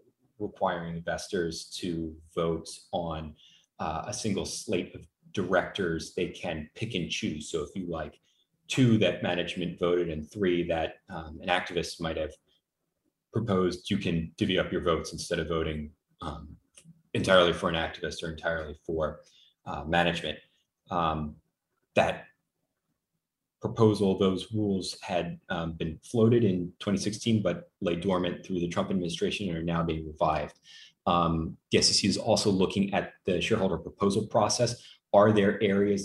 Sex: male